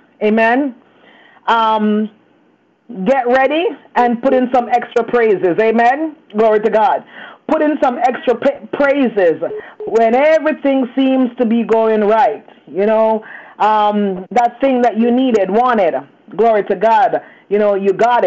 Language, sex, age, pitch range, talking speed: English, female, 30-49, 210-245 Hz, 140 wpm